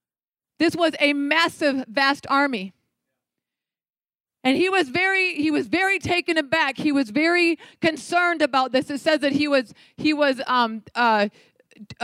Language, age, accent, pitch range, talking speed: English, 40-59, American, 270-315 Hz, 150 wpm